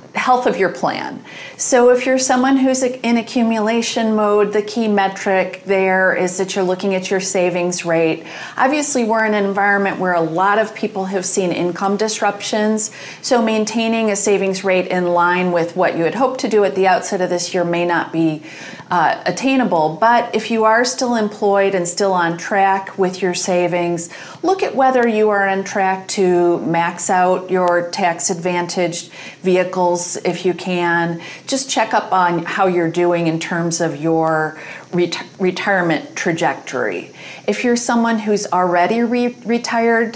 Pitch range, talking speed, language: 175-220 Hz, 165 wpm, English